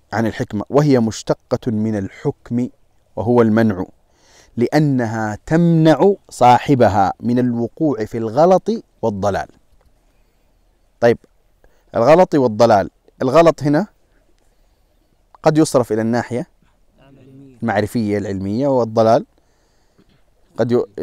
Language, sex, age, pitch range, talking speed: Arabic, male, 30-49, 105-140 Hz, 85 wpm